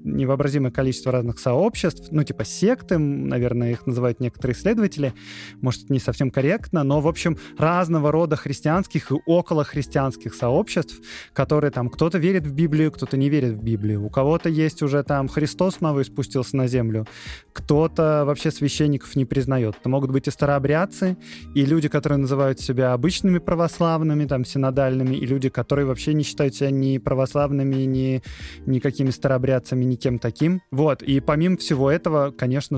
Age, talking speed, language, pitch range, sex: 20-39, 155 wpm, Russian, 125-150 Hz, male